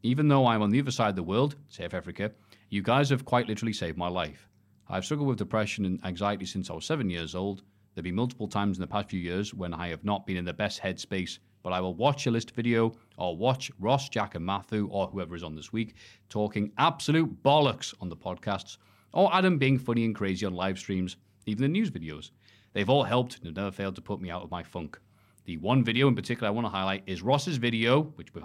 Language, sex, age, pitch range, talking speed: English, male, 30-49, 90-115 Hz, 245 wpm